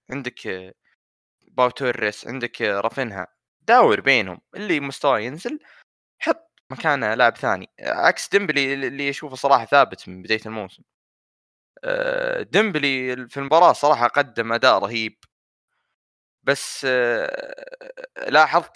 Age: 20-39